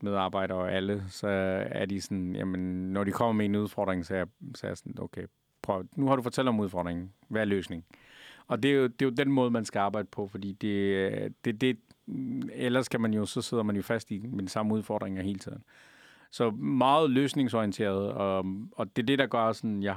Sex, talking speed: male, 235 wpm